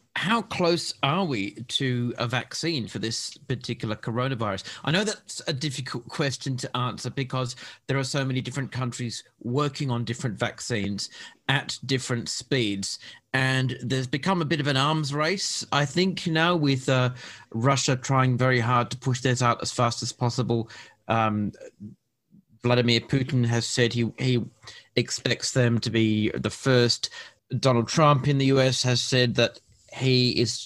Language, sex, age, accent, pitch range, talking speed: English, male, 40-59, British, 120-145 Hz, 160 wpm